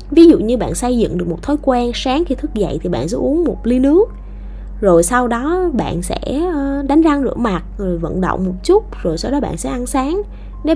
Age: 20-39